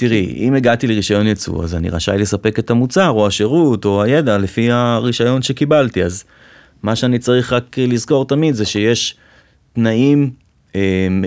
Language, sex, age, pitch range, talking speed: Hebrew, male, 30-49, 100-130 Hz, 155 wpm